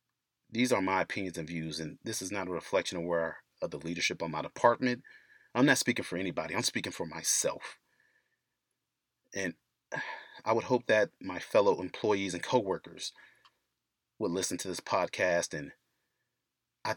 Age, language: 30-49, English